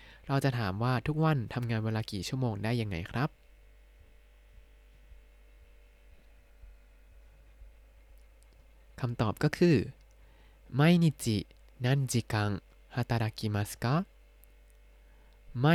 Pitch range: 100-130 Hz